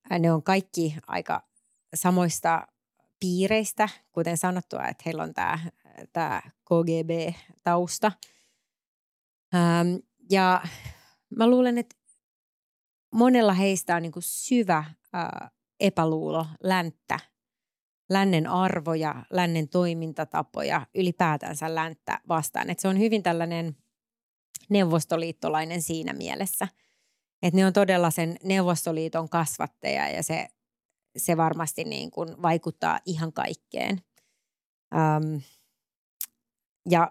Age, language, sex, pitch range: 30-49, Finnish, female, 165-195 Hz